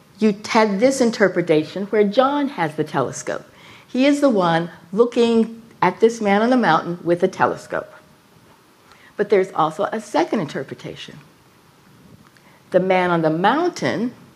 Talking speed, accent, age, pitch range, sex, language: 140 wpm, American, 60-79, 175-220 Hz, female, English